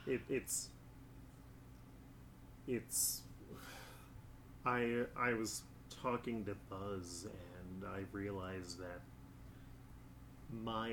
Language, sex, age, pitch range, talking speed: English, male, 30-49, 100-125 Hz, 75 wpm